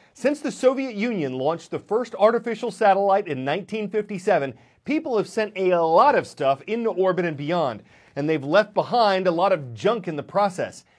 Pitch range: 165-220 Hz